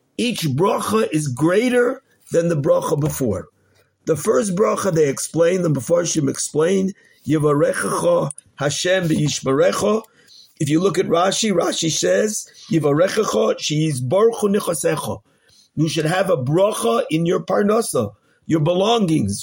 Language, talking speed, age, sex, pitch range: English, 125 wpm, 50-69, male, 145-190 Hz